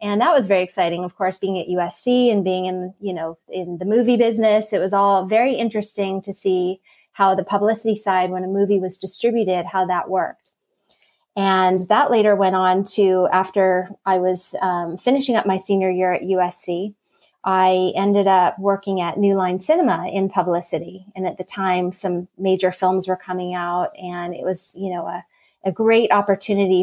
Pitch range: 185-205 Hz